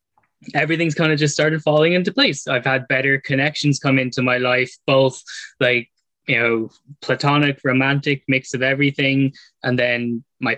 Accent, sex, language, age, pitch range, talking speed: Irish, male, English, 10-29, 125-155 Hz, 160 wpm